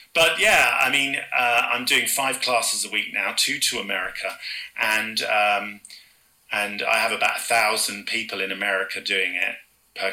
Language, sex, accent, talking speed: English, male, British, 165 wpm